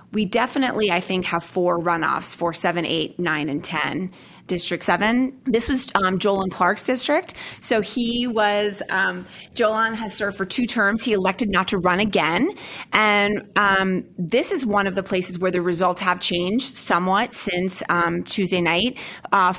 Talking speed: 170 wpm